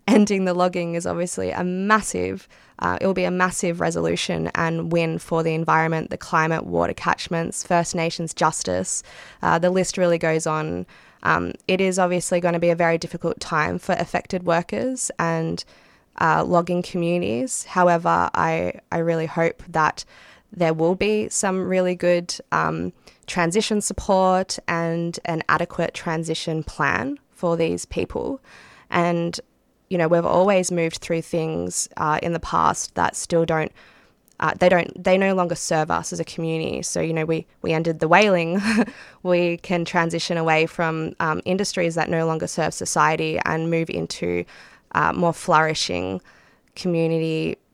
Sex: female